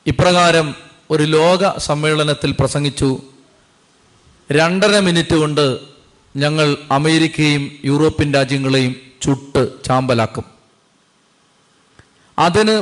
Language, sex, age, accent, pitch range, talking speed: Malayalam, male, 40-59, native, 140-180 Hz, 70 wpm